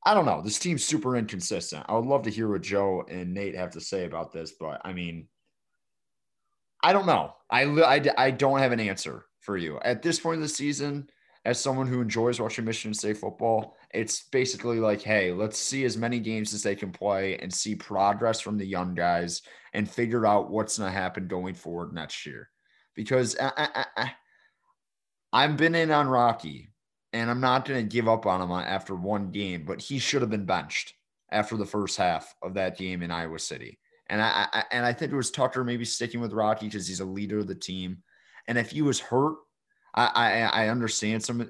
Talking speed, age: 210 wpm, 30-49